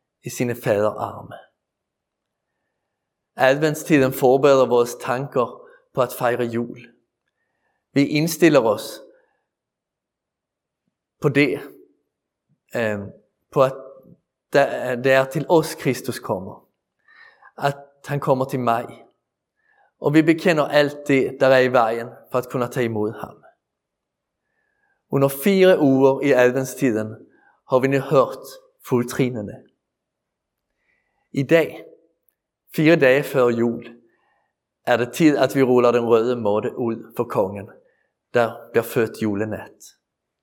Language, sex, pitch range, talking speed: Danish, male, 120-155 Hz, 115 wpm